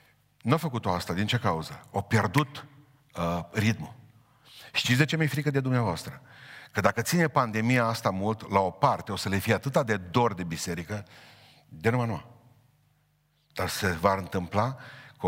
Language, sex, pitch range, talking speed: Romanian, male, 100-140 Hz, 175 wpm